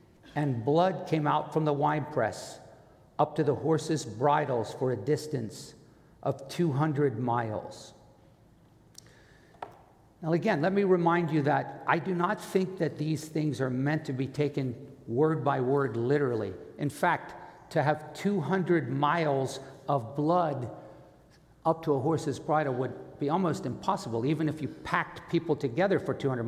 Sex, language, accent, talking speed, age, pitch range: male, English, American, 150 wpm, 50-69, 135-170 Hz